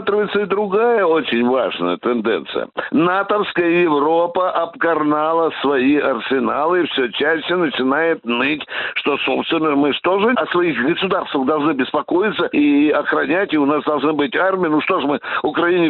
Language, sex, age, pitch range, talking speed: Russian, male, 60-79, 140-185 Hz, 150 wpm